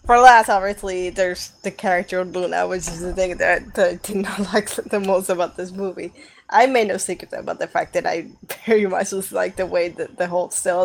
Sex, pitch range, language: female, 185-215 Hz, English